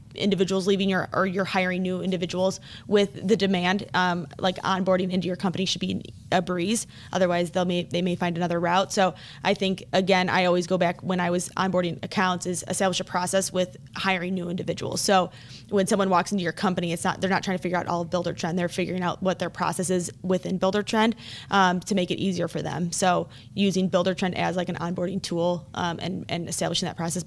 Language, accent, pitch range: English, American, 175-190 Hz